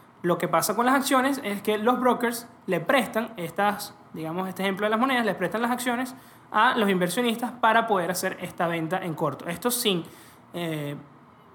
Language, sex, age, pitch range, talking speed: Spanish, male, 20-39, 175-235 Hz, 185 wpm